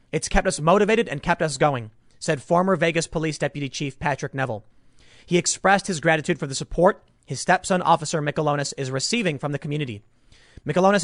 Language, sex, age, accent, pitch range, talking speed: English, male, 30-49, American, 140-190 Hz, 180 wpm